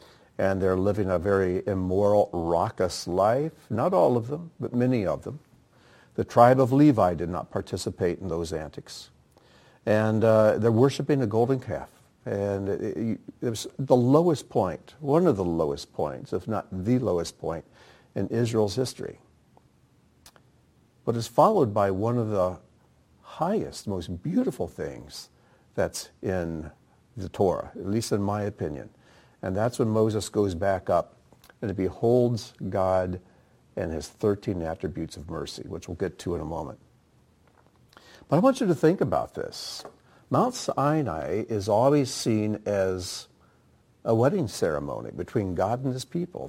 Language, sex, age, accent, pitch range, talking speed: English, male, 60-79, American, 95-125 Hz, 155 wpm